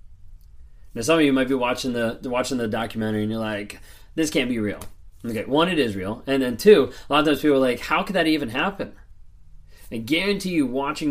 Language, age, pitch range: English, 30-49, 105-145 Hz